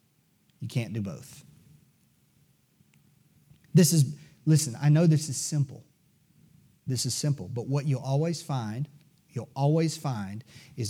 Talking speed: 130 wpm